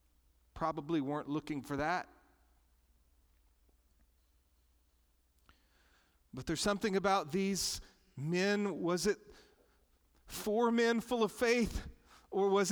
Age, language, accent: 40-59, English, American